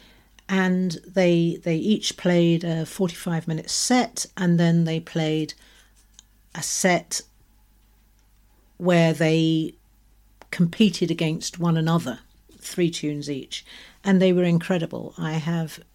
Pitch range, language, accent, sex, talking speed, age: 150-185 Hz, English, British, female, 115 wpm, 50-69